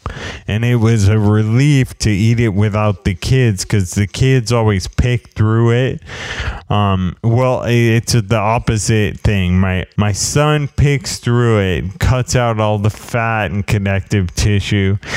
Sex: male